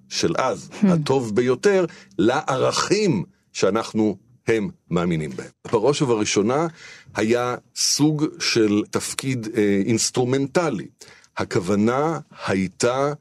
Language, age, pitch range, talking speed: Hebrew, 50-69, 110-145 Hz, 80 wpm